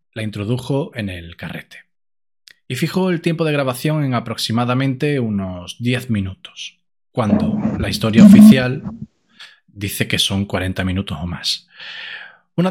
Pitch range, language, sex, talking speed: 105-155 Hz, Spanish, male, 130 wpm